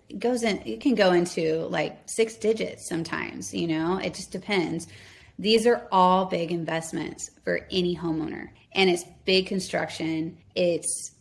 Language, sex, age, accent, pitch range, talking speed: English, female, 20-39, American, 175-210 Hz, 155 wpm